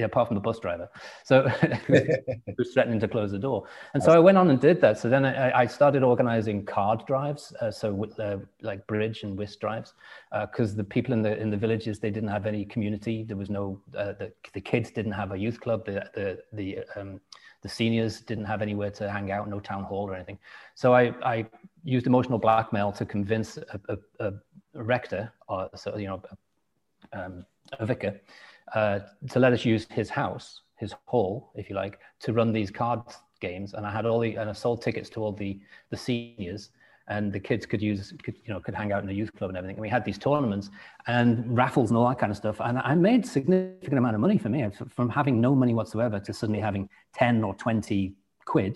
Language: English